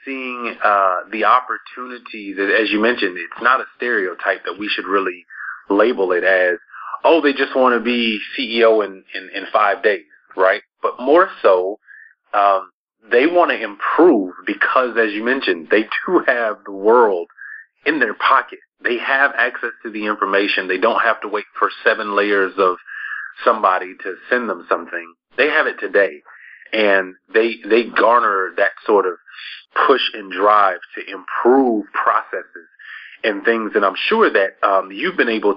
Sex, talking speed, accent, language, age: male, 165 wpm, American, English, 30-49